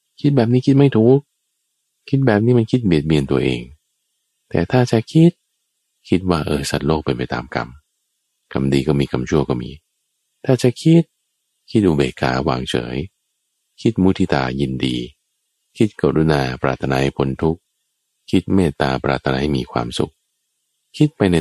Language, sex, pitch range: Thai, male, 70-115 Hz